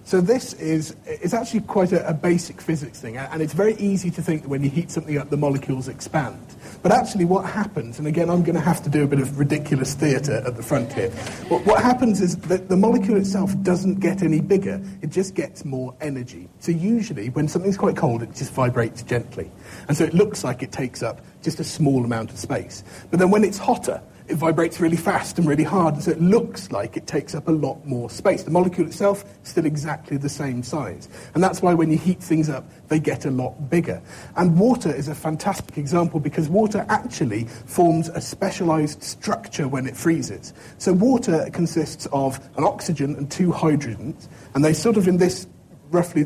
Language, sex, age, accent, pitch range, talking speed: English, male, 40-59, British, 140-180 Hz, 215 wpm